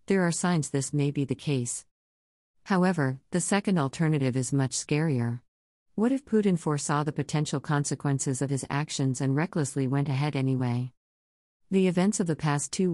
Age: 50-69